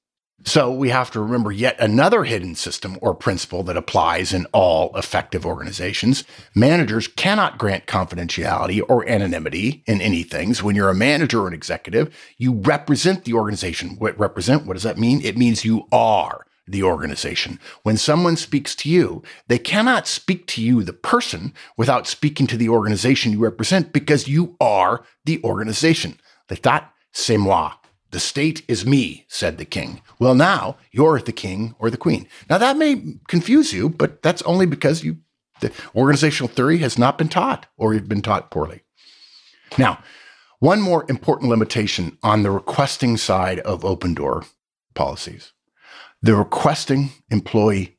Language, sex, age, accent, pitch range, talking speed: English, male, 50-69, American, 100-145 Hz, 165 wpm